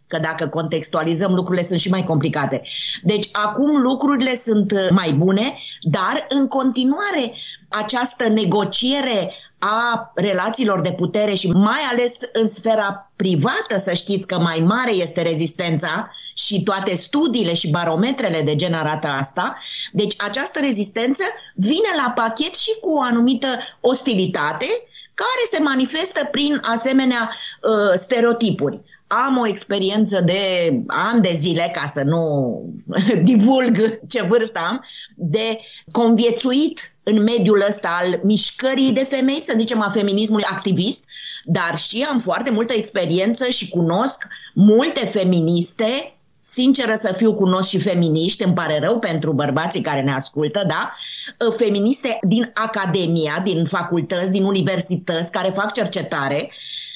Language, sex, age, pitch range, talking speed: Romanian, female, 30-49, 180-245 Hz, 135 wpm